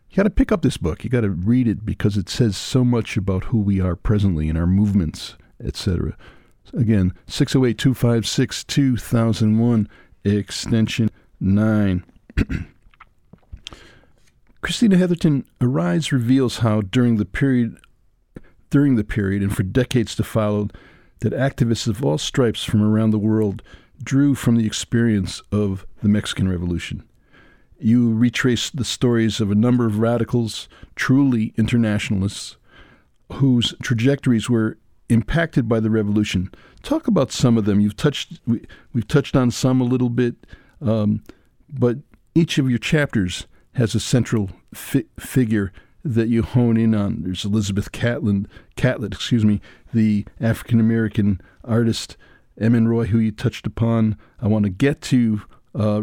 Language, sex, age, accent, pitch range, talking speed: English, male, 60-79, American, 105-125 Hz, 145 wpm